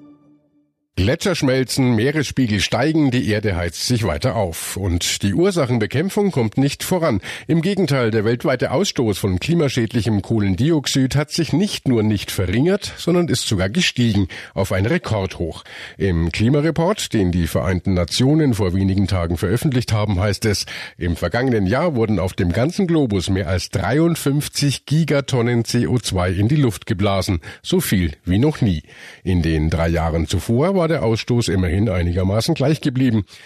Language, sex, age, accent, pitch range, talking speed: German, male, 50-69, German, 100-145 Hz, 150 wpm